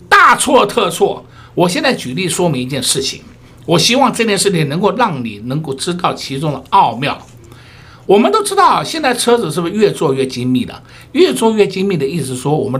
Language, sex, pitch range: Chinese, male, 140-230 Hz